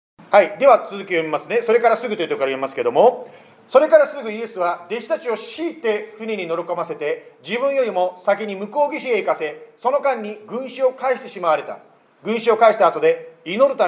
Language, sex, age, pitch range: Japanese, male, 40-59, 185-285 Hz